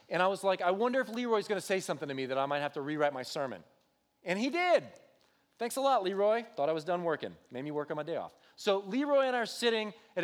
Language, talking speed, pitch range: English, 280 wpm, 170-220 Hz